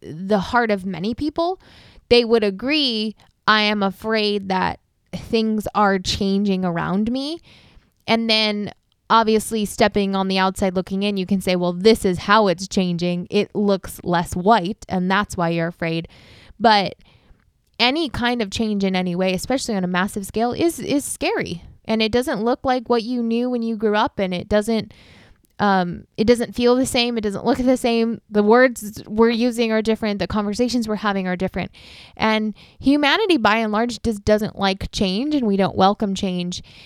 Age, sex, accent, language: 20-39, female, American, English